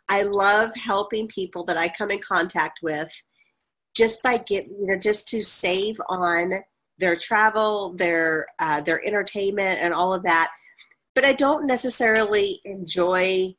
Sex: female